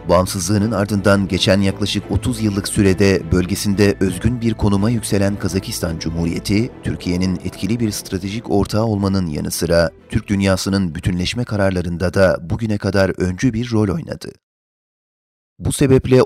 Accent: native